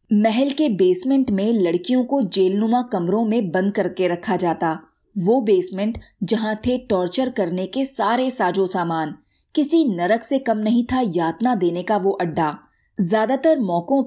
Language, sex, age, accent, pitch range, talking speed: Hindi, female, 20-39, native, 175-240 Hz, 155 wpm